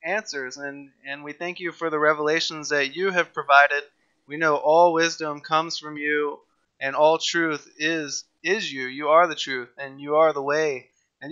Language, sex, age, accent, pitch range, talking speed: English, male, 20-39, American, 150-185 Hz, 190 wpm